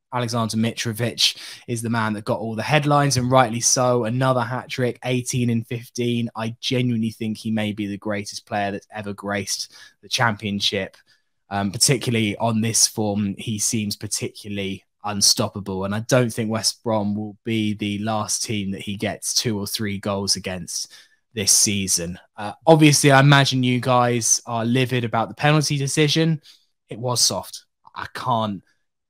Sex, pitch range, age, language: male, 110-140 Hz, 10-29, English